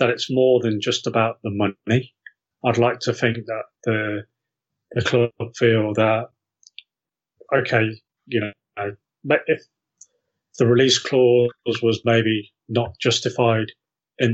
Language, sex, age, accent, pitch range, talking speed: English, male, 30-49, British, 115-130 Hz, 130 wpm